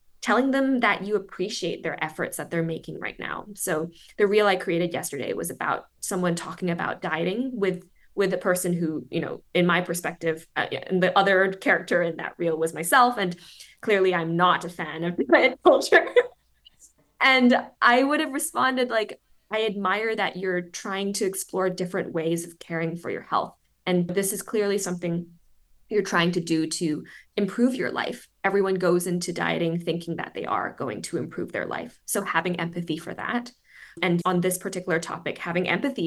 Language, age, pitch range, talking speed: English, 20-39, 170-205 Hz, 185 wpm